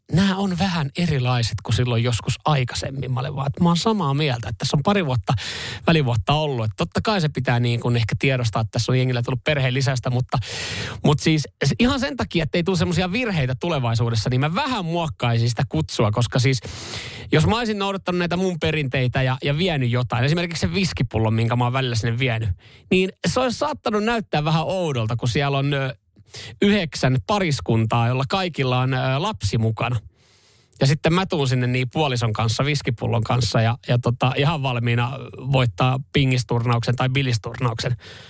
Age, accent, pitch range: 30-49, native, 120-155 Hz